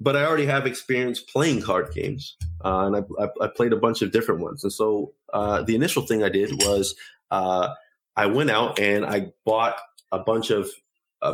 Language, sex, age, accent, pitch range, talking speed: English, male, 20-39, American, 100-135 Hz, 205 wpm